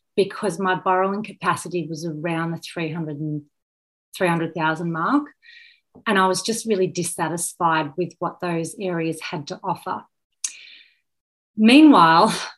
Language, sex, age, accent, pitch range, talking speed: English, female, 30-49, Australian, 170-205 Hz, 110 wpm